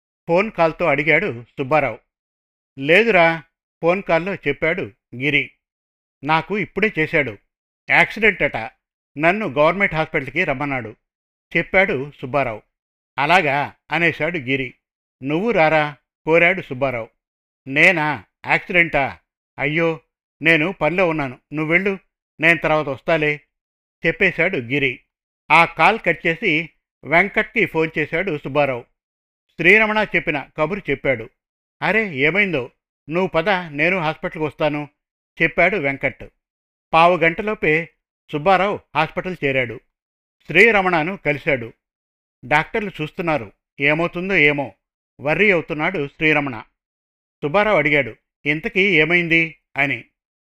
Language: Telugu